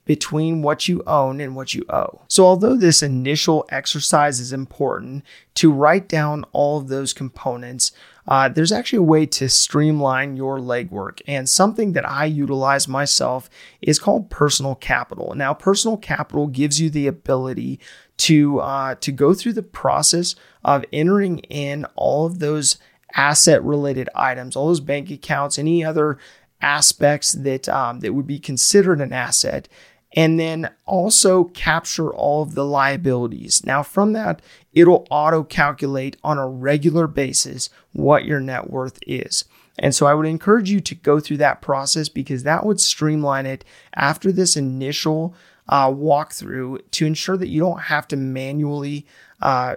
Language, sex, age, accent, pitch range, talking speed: English, male, 30-49, American, 140-165 Hz, 160 wpm